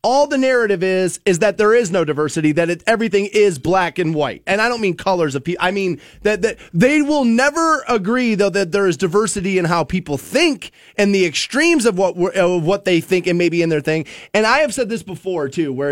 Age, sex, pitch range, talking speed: 20-39, male, 160-210 Hz, 240 wpm